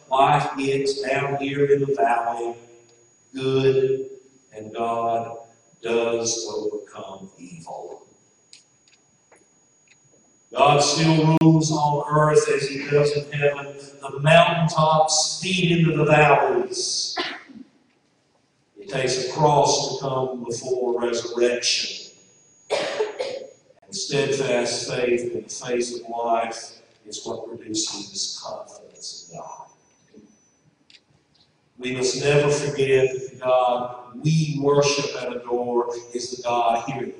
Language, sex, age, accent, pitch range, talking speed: English, male, 50-69, American, 120-150 Hz, 105 wpm